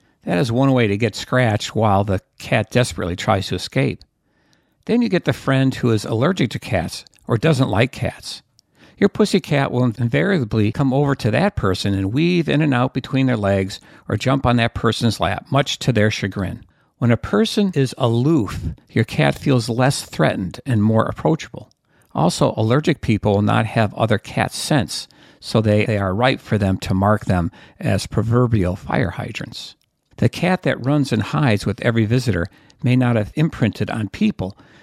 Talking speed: 185 wpm